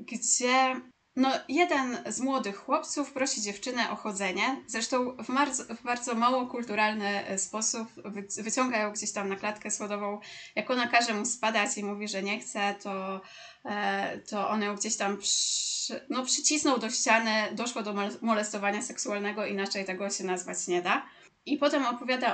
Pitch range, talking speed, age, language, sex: 205-260 Hz, 165 wpm, 20-39, Polish, female